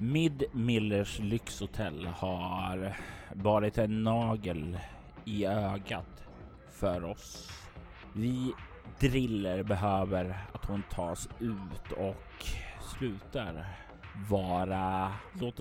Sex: male